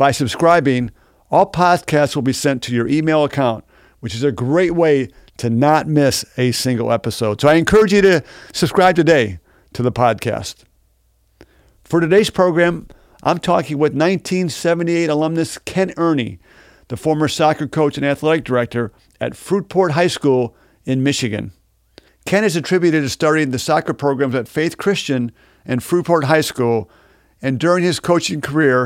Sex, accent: male, American